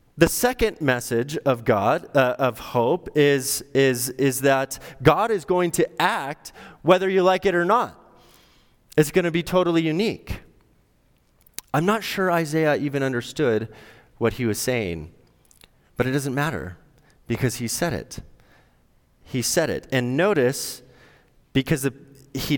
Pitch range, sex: 100-145 Hz, male